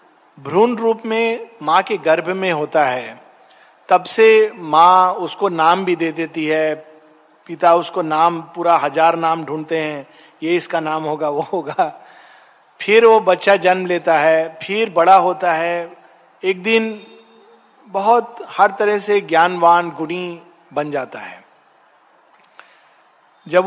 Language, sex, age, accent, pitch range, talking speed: Hindi, male, 50-69, native, 165-220 Hz, 135 wpm